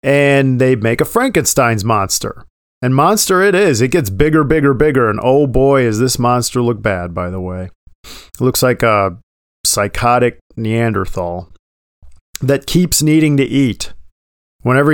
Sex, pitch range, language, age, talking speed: male, 100-140 Hz, English, 40-59, 155 wpm